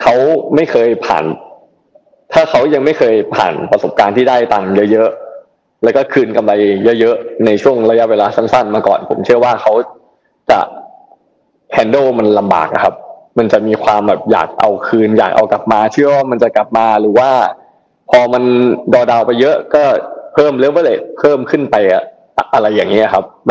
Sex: male